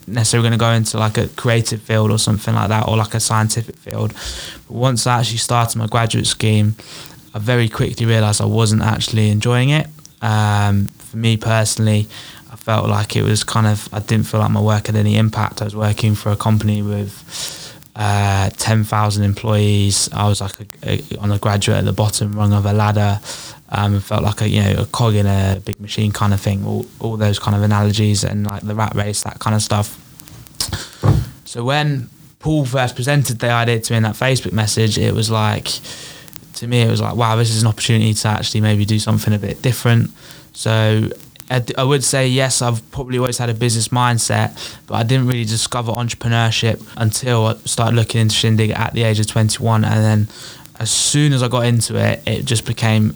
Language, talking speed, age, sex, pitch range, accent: English, 210 wpm, 10-29, male, 105-120 Hz, British